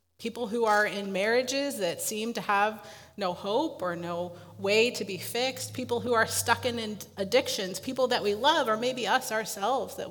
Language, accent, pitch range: English, American, 195-245 Hz